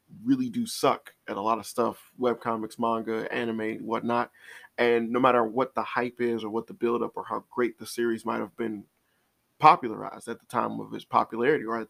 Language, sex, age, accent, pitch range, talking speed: English, male, 20-39, American, 115-130 Hz, 200 wpm